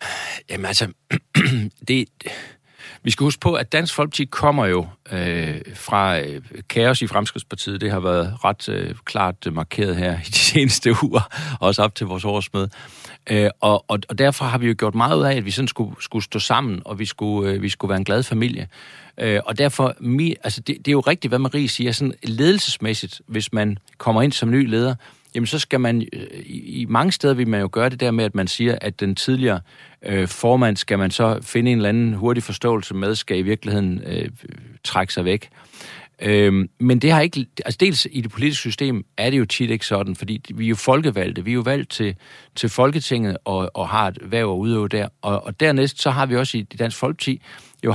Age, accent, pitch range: 60-79, native, 100-130 Hz